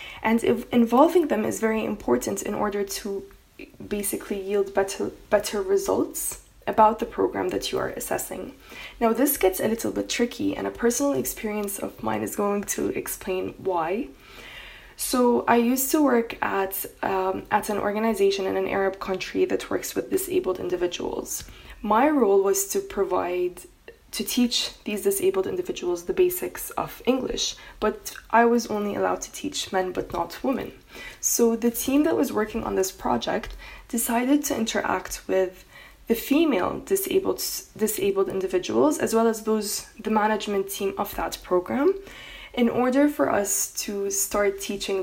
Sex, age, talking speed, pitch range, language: female, 20-39, 160 wpm, 195-275 Hz, English